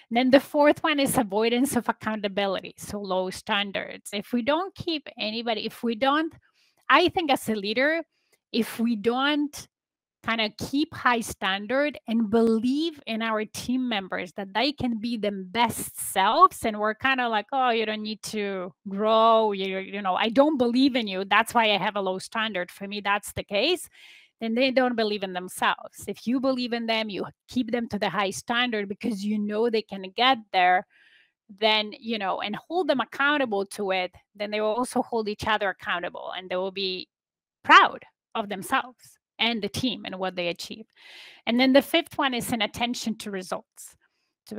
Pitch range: 205-255 Hz